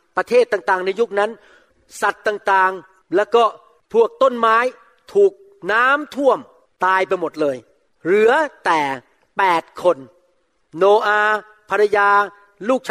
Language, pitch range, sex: Thai, 170-235 Hz, male